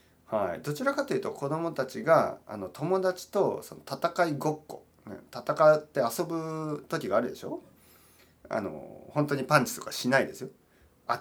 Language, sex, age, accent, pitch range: Japanese, male, 40-59, native, 110-155 Hz